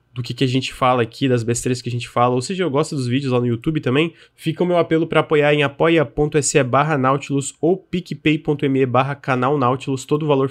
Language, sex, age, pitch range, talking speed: Portuguese, male, 20-39, 120-145 Hz, 235 wpm